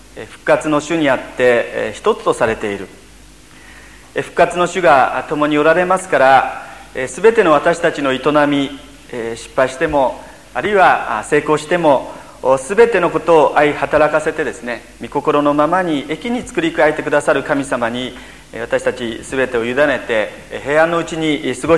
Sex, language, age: male, Japanese, 40-59